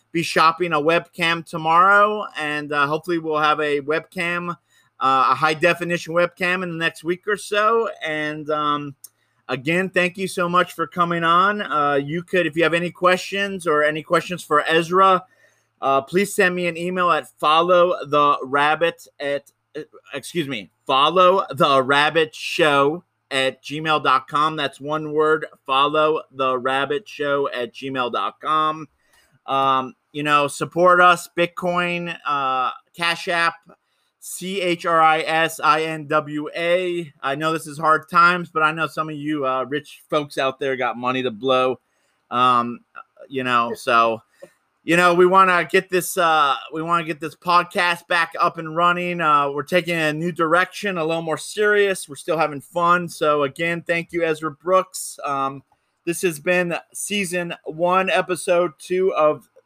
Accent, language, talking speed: American, English, 165 wpm